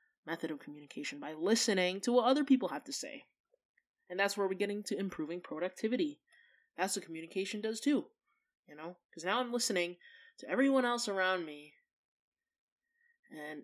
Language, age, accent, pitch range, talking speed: English, 20-39, American, 175-285 Hz, 165 wpm